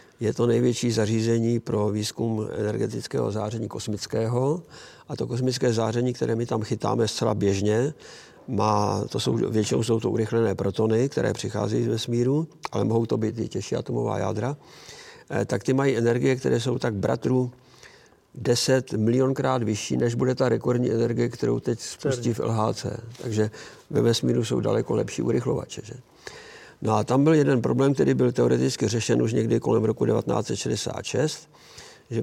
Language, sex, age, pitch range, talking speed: Slovak, male, 50-69, 110-130 Hz, 155 wpm